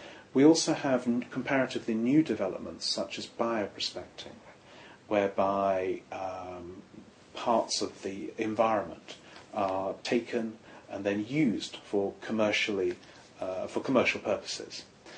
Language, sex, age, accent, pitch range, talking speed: English, male, 40-59, British, 100-130 Hz, 105 wpm